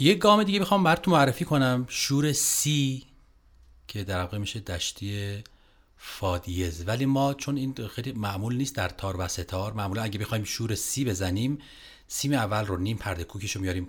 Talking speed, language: 175 wpm, Persian